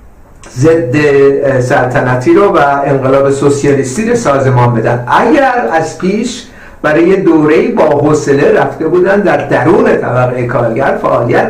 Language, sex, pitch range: Persian, male, 140-195 Hz